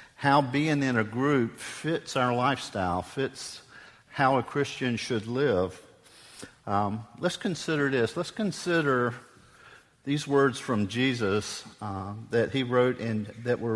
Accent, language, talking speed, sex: American, English, 135 wpm, male